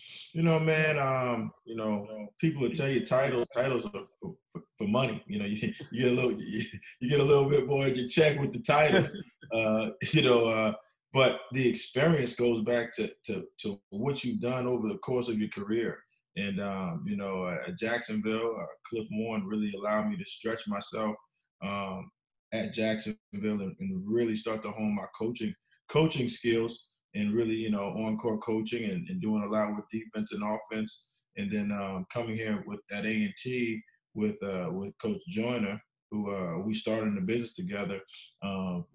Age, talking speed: 20-39, 185 wpm